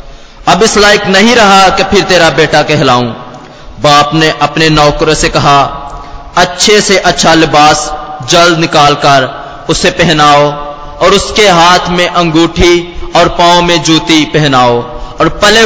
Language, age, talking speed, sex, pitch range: Hindi, 20-39, 140 wpm, male, 145-175 Hz